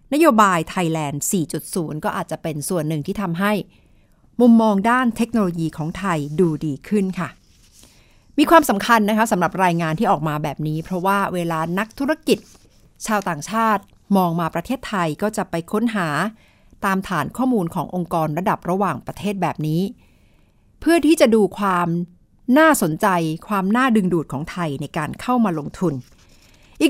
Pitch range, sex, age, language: 165-225 Hz, female, 60-79, Thai